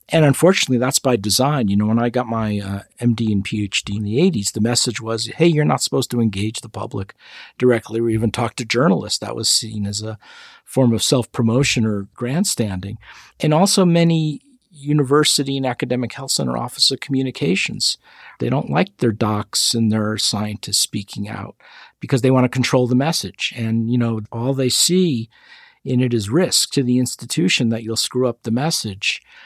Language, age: English, 50-69